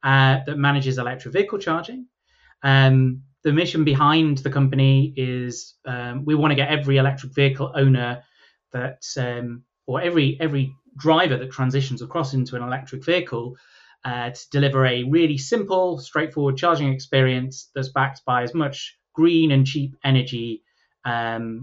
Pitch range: 125-145 Hz